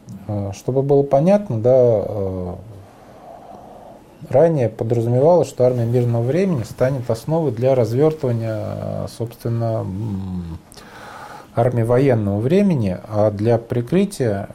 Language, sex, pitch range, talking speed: Russian, male, 105-135 Hz, 85 wpm